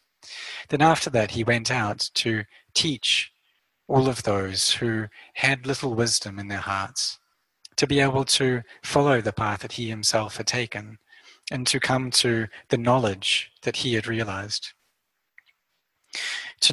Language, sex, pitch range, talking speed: English, male, 105-130 Hz, 145 wpm